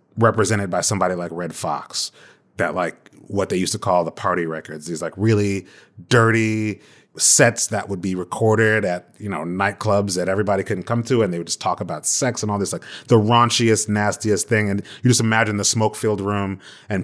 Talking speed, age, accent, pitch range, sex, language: 205 wpm, 30-49, American, 95-120 Hz, male, English